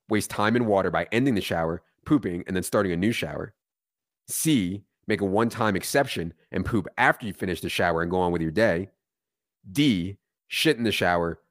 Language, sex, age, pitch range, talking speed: English, male, 30-49, 90-115 Hz, 200 wpm